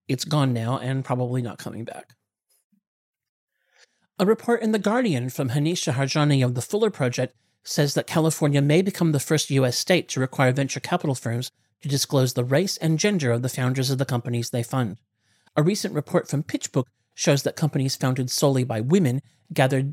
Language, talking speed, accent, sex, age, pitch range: English, 185 wpm, American, male, 40-59, 125-165 Hz